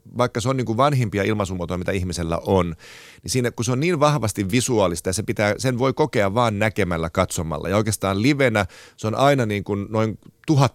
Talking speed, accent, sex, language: 205 wpm, native, male, Finnish